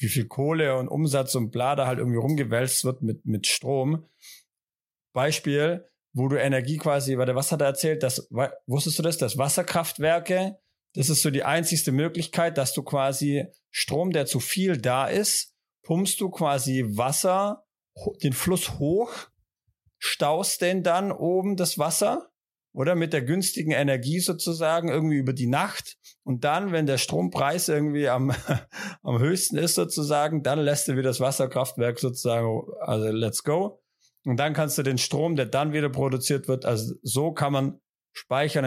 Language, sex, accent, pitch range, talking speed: German, male, German, 125-155 Hz, 165 wpm